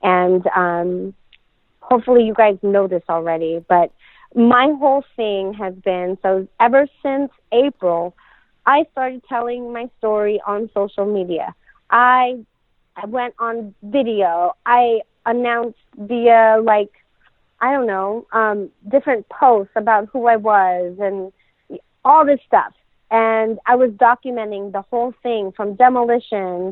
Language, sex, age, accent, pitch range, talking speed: English, female, 30-49, American, 200-245 Hz, 130 wpm